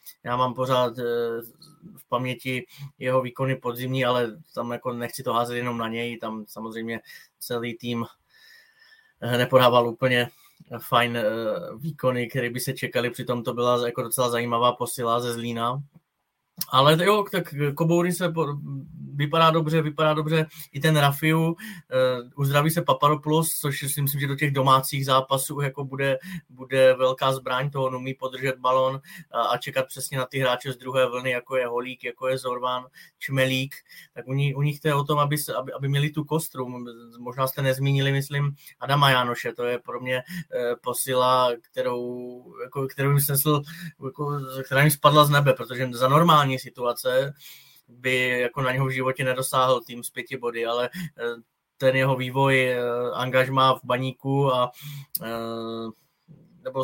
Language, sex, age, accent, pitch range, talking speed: Czech, male, 20-39, native, 125-145 Hz, 160 wpm